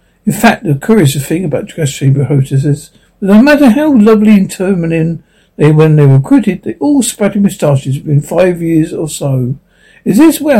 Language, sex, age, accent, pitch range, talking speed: English, male, 60-79, British, 150-215 Hz, 195 wpm